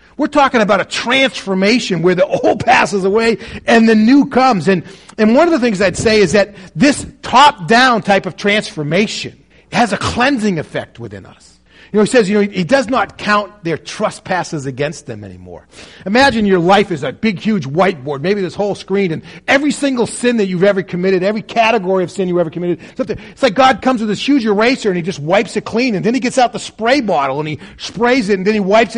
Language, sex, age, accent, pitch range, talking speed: English, male, 40-59, American, 165-230 Hz, 225 wpm